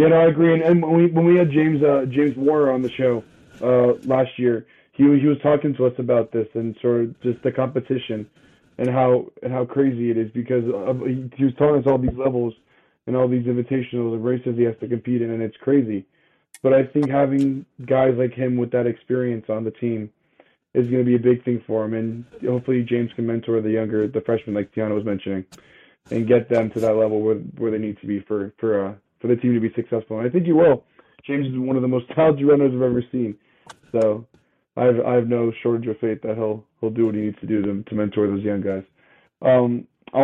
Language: English